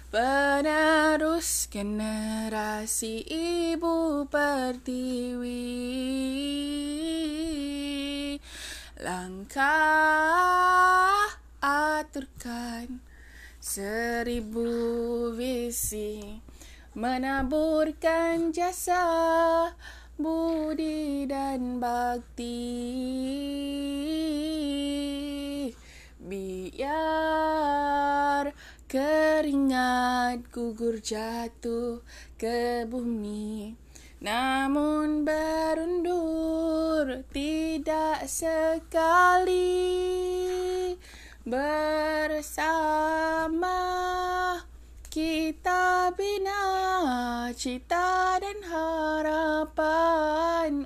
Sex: female